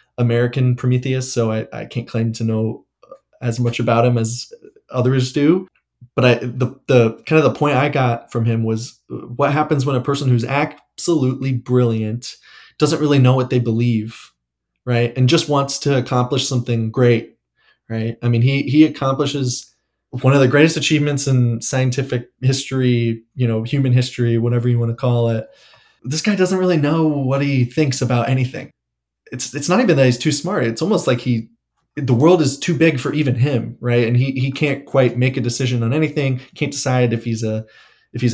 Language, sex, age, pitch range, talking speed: English, male, 20-39, 120-140 Hz, 195 wpm